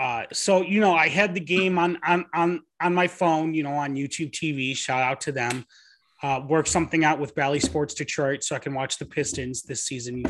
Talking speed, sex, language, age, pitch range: 235 wpm, male, English, 30-49, 135-175 Hz